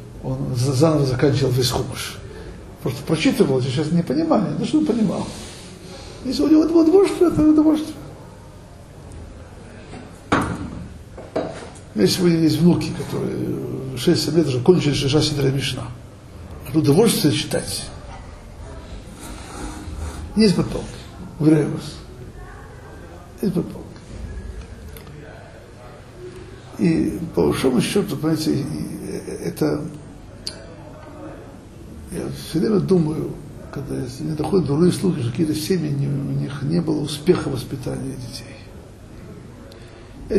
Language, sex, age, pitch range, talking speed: Russian, male, 60-79, 125-165 Hz, 100 wpm